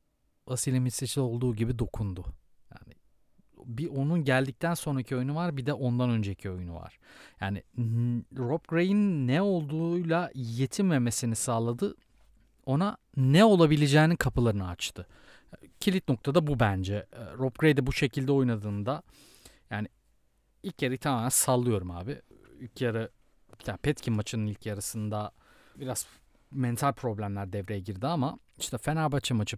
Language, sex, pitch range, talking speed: Turkish, male, 110-140 Hz, 125 wpm